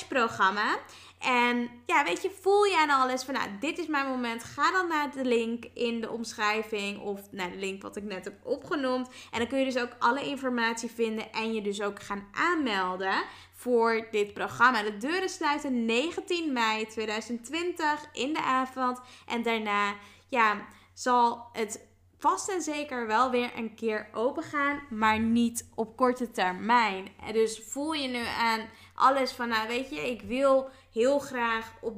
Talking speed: 175 wpm